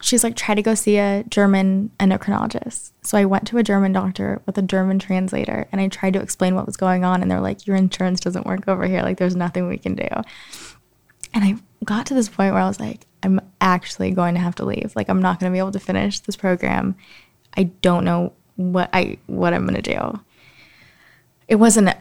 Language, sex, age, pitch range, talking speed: English, female, 20-39, 180-205 Hz, 230 wpm